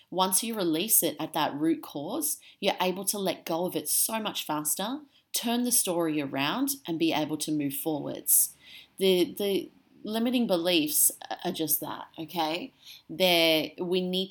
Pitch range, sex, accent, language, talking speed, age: 155-235 Hz, female, Australian, English, 165 wpm, 30-49